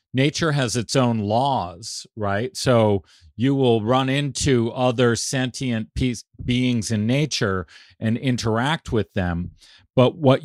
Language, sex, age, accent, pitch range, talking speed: English, male, 50-69, American, 105-135 Hz, 125 wpm